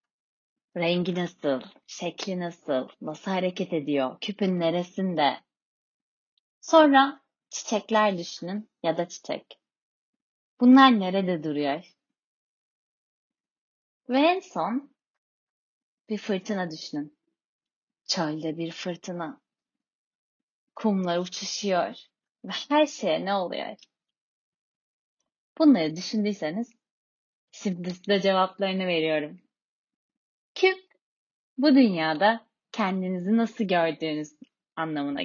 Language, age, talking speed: Turkish, 30-49, 80 wpm